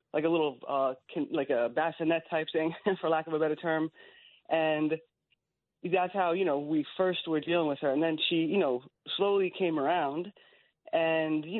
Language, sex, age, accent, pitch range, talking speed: English, female, 30-49, American, 145-170 Hz, 185 wpm